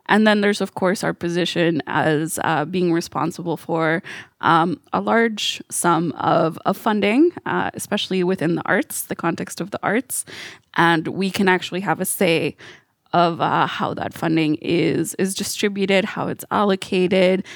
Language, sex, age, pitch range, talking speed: French, female, 20-39, 170-195 Hz, 160 wpm